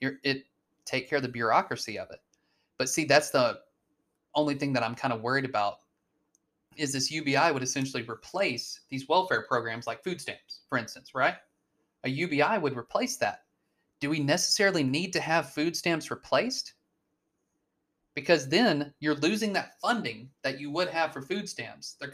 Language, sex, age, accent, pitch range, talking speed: English, male, 30-49, American, 140-175 Hz, 175 wpm